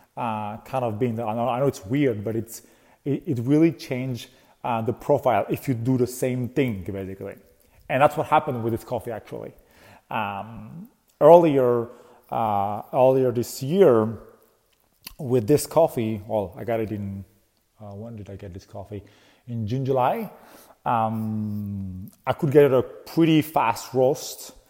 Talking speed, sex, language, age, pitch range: 160 wpm, male, English, 30-49, 115-145 Hz